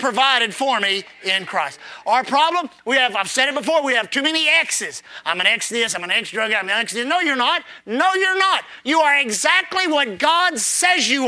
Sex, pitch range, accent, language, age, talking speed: male, 235-335 Hz, American, English, 30-49, 235 wpm